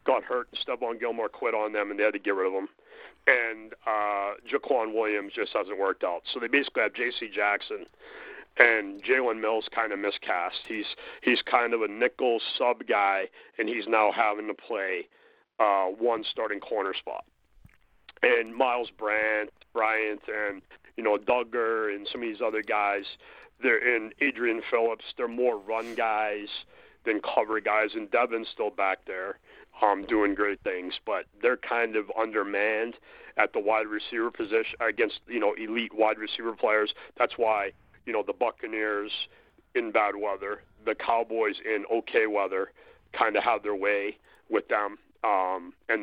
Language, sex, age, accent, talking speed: English, male, 40-59, American, 170 wpm